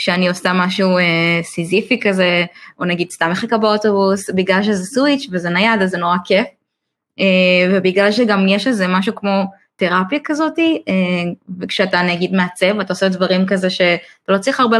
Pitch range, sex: 180-210 Hz, female